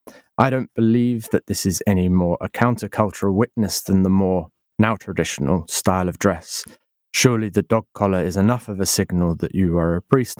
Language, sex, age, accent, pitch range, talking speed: English, male, 30-49, British, 90-105 Hz, 190 wpm